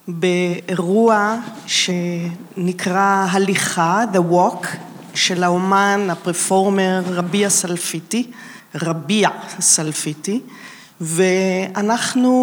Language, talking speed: Hebrew, 65 wpm